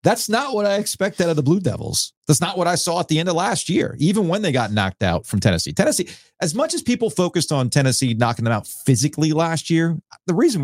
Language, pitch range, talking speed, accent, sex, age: English, 110-150 Hz, 255 wpm, American, male, 40-59